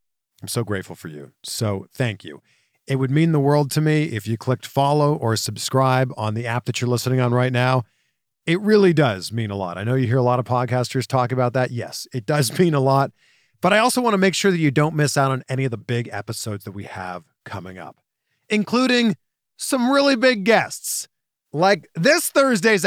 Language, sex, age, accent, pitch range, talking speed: English, male, 40-59, American, 120-170 Hz, 220 wpm